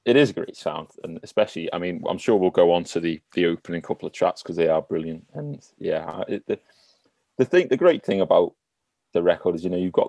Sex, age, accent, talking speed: male, 30-49, British, 250 wpm